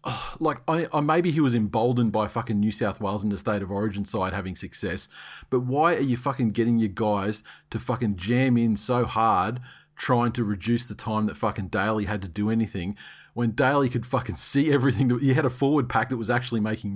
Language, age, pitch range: English, 40-59, 105-125 Hz